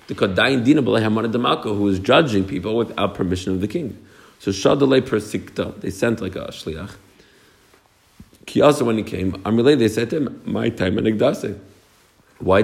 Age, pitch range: 50-69, 90-115 Hz